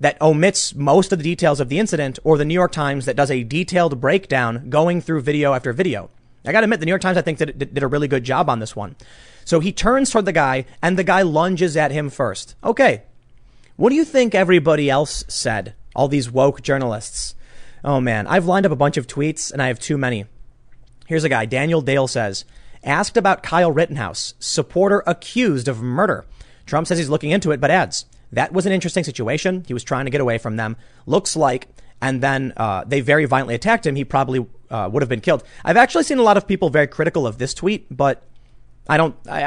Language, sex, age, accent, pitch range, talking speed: English, male, 30-49, American, 125-165 Hz, 230 wpm